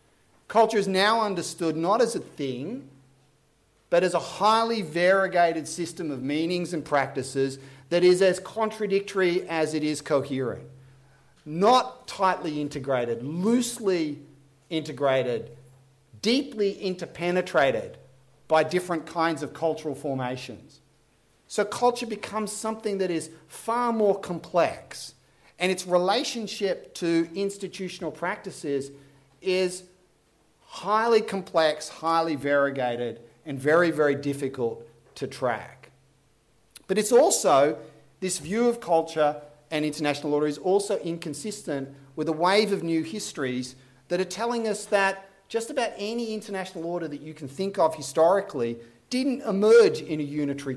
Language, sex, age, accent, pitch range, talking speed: English, male, 40-59, Australian, 140-195 Hz, 125 wpm